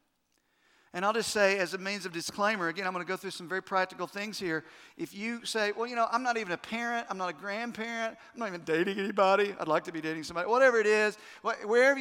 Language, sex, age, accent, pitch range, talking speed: English, male, 50-69, American, 175-225 Hz, 250 wpm